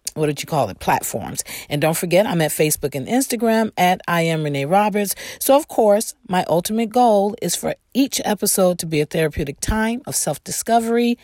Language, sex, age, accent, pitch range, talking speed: English, female, 40-59, American, 170-225 Hz, 190 wpm